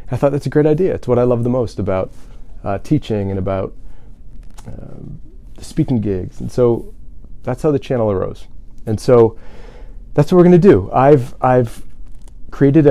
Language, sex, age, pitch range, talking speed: English, male, 30-49, 105-130 Hz, 175 wpm